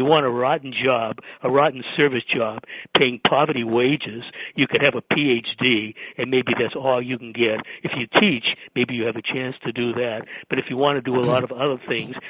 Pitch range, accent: 115-135 Hz, American